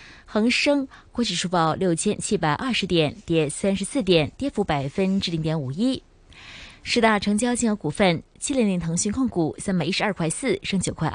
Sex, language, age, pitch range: female, Chinese, 20-39, 160-220 Hz